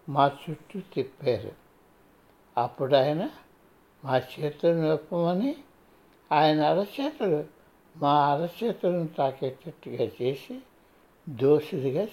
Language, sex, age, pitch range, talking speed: Telugu, male, 60-79, 135-195 Hz, 75 wpm